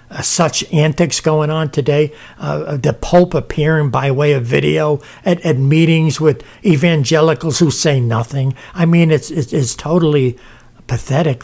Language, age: English, 60-79